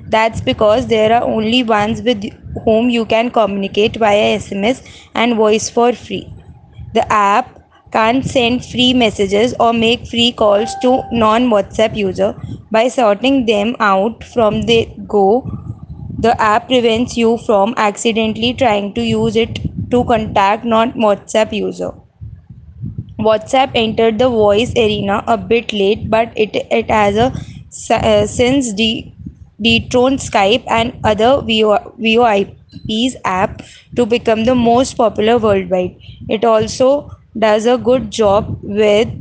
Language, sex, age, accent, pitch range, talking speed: English, female, 20-39, Indian, 210-240 Hz, 135 wpm